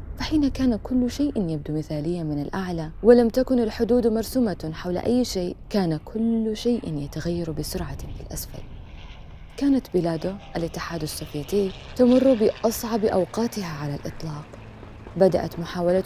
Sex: female